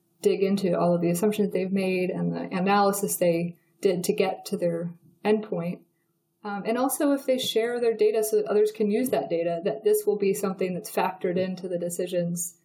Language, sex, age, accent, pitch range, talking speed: English, female, 20-39, American, 175-210 Hz, 200 wpm